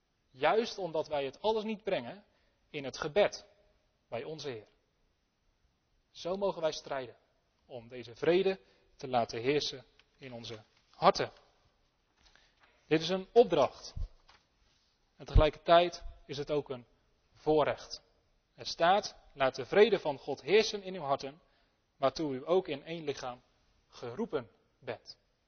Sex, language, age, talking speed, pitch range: male, Dutch, 30-49, 130 wpm, 135-195 Hz